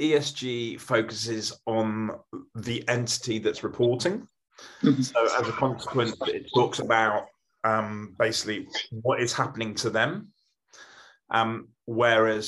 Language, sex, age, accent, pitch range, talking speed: English, male, 30-49, British, 110-120 Hz, 110 wpm